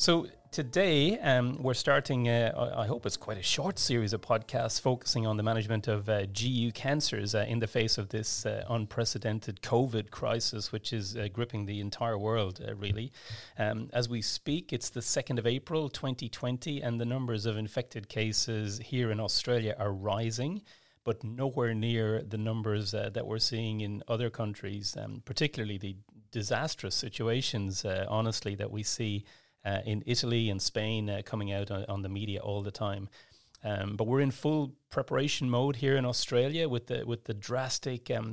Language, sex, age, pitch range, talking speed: English, male, 30-49, 105-120 Hz, 180 wpm